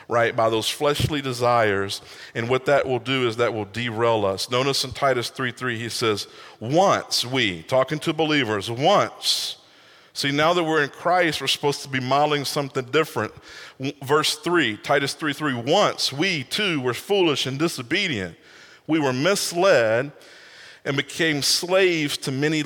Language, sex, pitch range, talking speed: English, male, 120-150 Hz, 160 wpm